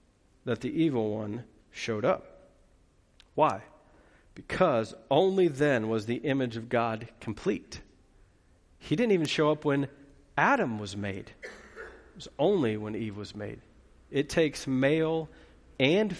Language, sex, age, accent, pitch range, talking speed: English, male, 40-59, American, 130-170 Hz, 135 wpm